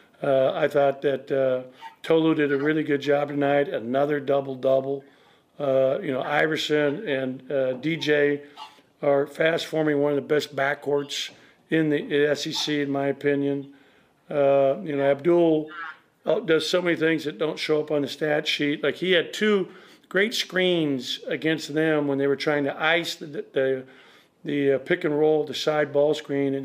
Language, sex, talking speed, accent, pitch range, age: English, male, 165 wpm, American, 140-160 Hz, 50-69